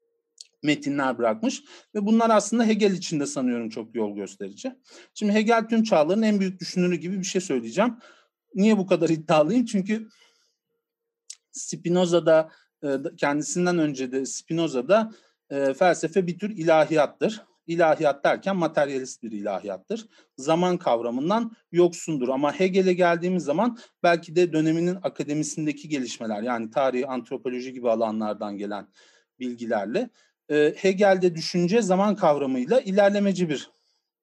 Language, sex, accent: Turkish, male, native